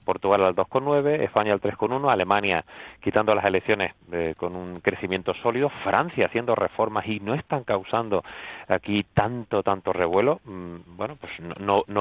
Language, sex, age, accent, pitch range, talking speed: Spanish, male, 30-49, Spanish, 95-115 Hz, 155 wpm